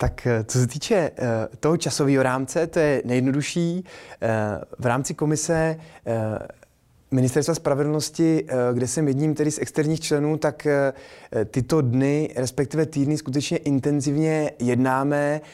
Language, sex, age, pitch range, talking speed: Czech, male, 20-39, 130-160 Hz, 115 wpm